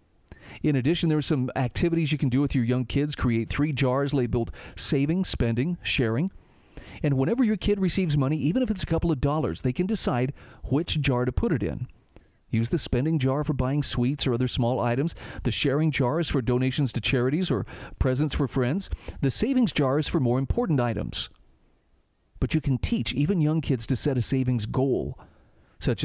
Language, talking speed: English, 200 wpm